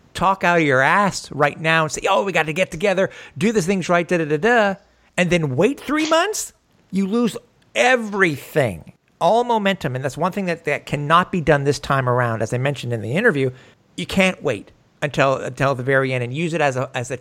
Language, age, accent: English, 50-69, American